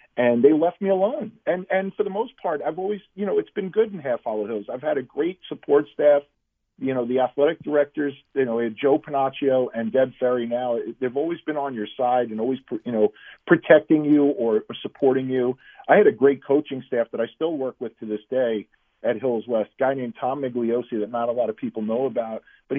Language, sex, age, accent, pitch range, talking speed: English, male, 50-69, American, 125-175 Hz, 230 wpm